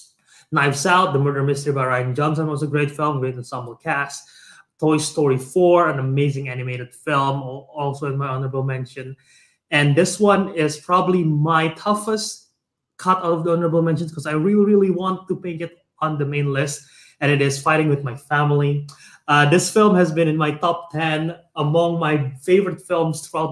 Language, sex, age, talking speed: English, male, 20-39, 185 wpm